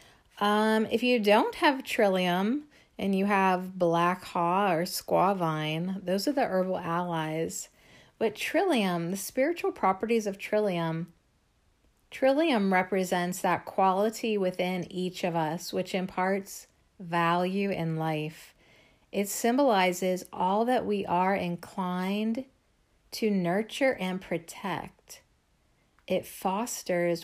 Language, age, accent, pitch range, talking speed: English, 50-69, American, 175-205 Hz, 115 wpm